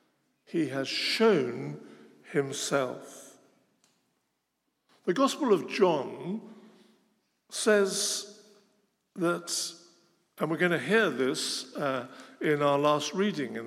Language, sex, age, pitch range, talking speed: English, male, 60-79, 155-235 Hz, 95 wpm